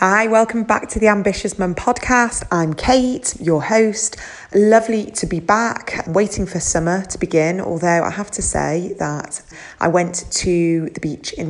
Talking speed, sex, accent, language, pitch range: 170 wpm, female, British, English, 160-200 Hz